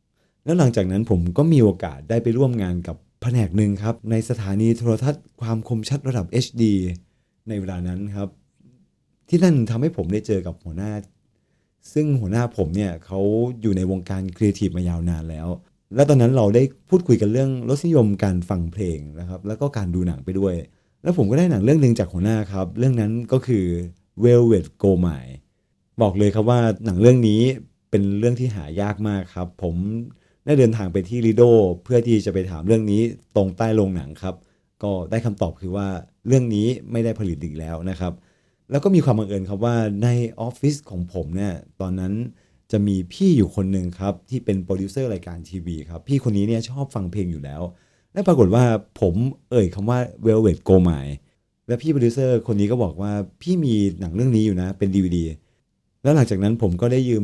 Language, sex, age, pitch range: Thai, male, 30-49, 95-120 Hz